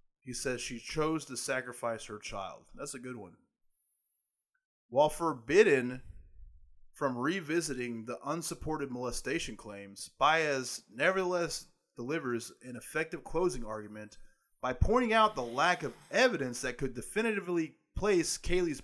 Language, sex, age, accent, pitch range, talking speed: English, male, 20-39, American, 115-150 Hz, 125 wpm